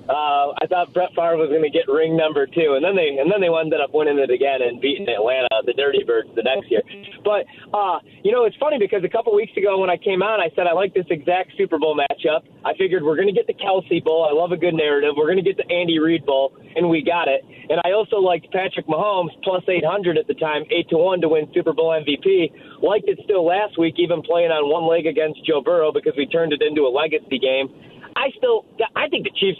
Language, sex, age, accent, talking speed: English, male, 30-49, American, 260 wpm